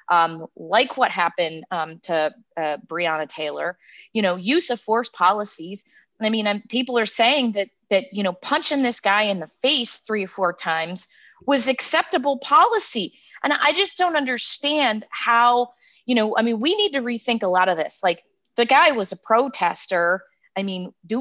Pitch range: 180-245 Hz